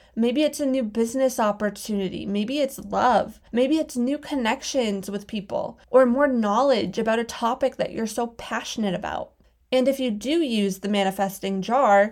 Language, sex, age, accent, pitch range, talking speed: English, female, 20-39, American, 210-265 Hz, 170 wpm